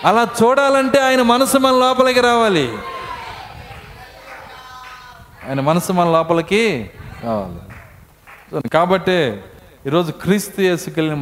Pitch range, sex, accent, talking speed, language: 125-185 Hz, male, native, 85 wpm, Telugu